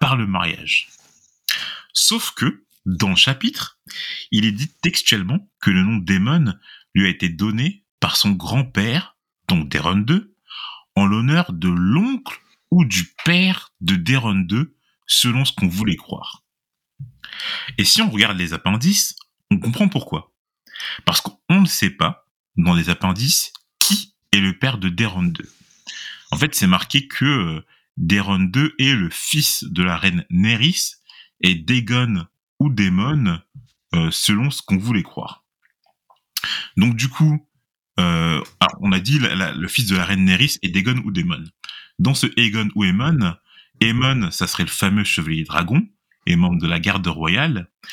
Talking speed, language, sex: 160 wpm, French, male